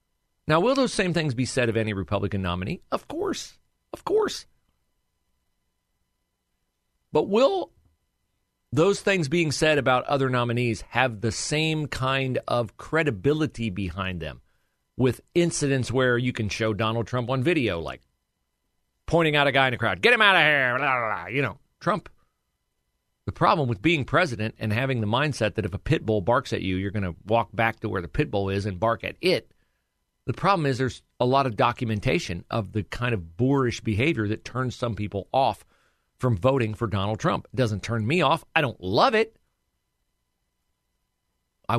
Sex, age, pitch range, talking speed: male, 40-59, 90-130 Hz, 180 wpm